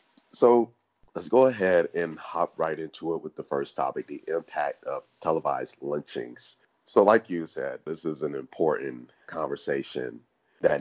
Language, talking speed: English, 155 wpm